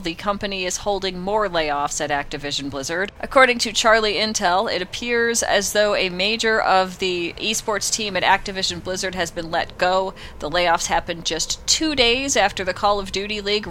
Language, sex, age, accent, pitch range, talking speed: English, female, 30-49, American, 165-200 Hz, 185 wpm